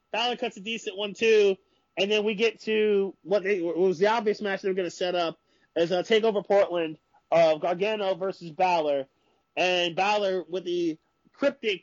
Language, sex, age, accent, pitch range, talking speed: English, male, 30-49, American, 175-250 Hz, 195 wpm